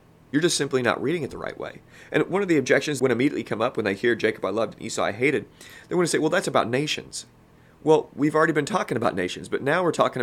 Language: English